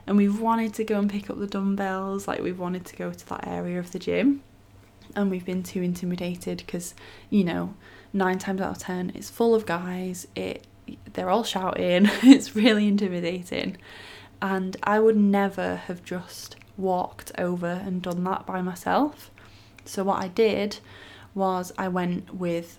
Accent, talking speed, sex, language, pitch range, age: British, 175 wpm, female, English, 170-195 Hz, 20-39